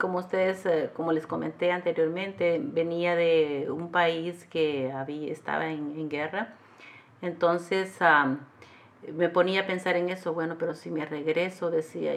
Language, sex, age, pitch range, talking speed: English, female, 40-59, 155-180 Hz, 140 wpm